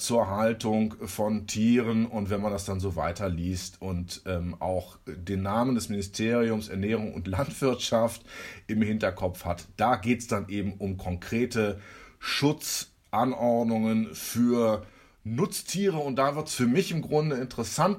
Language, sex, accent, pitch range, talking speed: German, male, German, 105-135 Hz, 145 wpm